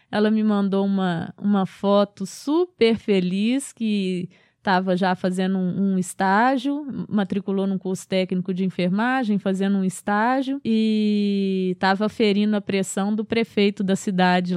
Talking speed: 135 wpm